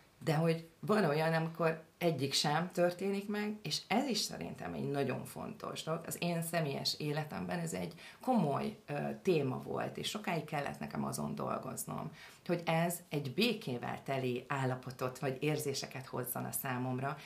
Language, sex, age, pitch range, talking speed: Hungarian, female, 40-59, 130-165 Hz, 145 wpm